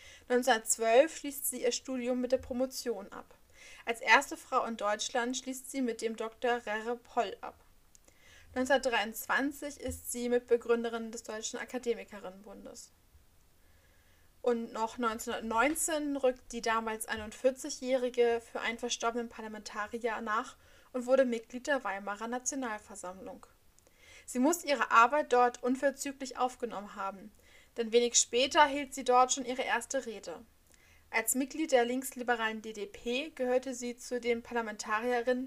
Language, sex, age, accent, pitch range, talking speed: German, female, 20-39, German, 225-265 Hz, 125 wpm